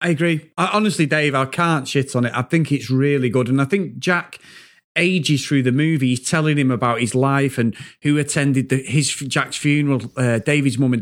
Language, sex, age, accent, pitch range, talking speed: English, male, 30-49, British, 130-175 Hz, 220 wpm